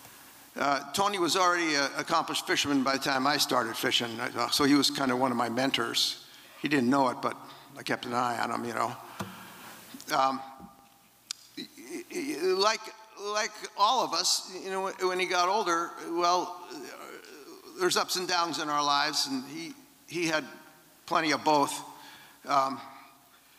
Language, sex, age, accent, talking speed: English, male, 50-69, American, 160 wpm